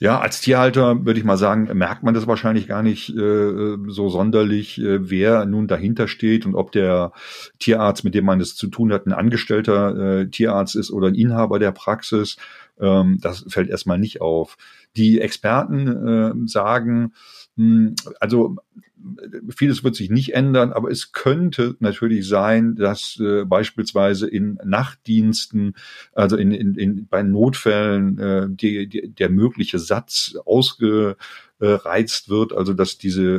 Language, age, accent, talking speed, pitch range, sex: German, 40-59, German, 155 wpm, 95-115 Hz, male